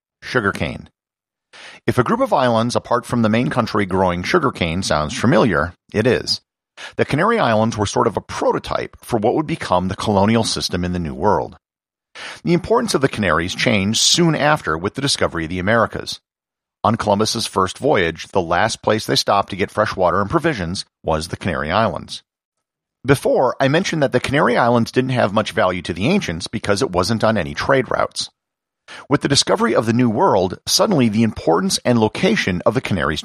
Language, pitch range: English, 90-120 Hz